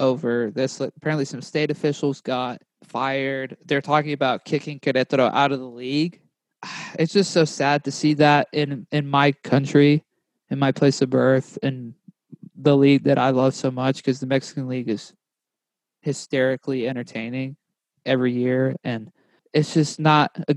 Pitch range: 130-150 Hz